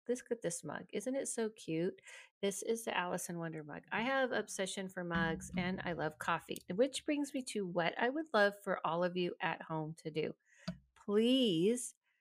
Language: English